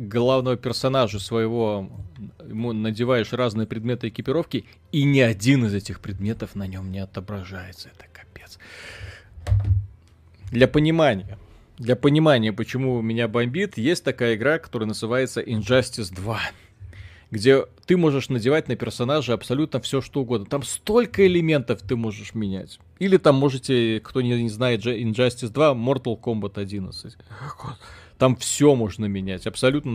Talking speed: 130 wpm